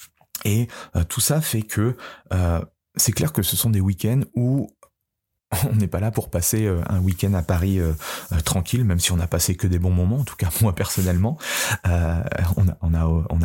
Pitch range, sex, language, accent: 85-105 Hz, male, French, French